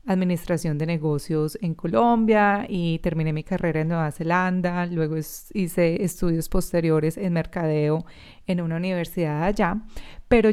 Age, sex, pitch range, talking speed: 30-49, female, 165-200 Hz, 130 wpm